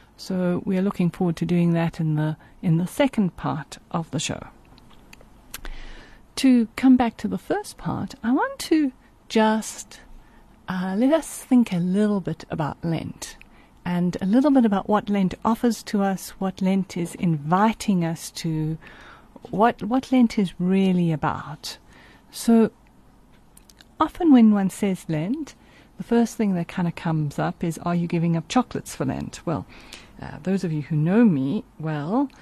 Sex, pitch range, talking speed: female, 170-230 Hz, 165 wpm